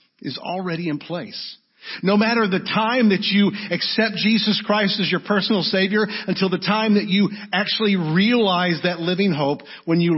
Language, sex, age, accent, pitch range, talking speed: English, male, 50-69, American, 160-215 Hz, 170 wpm